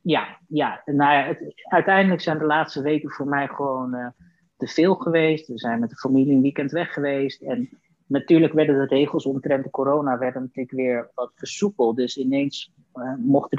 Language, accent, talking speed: Dutch, Dutch, 185 wpm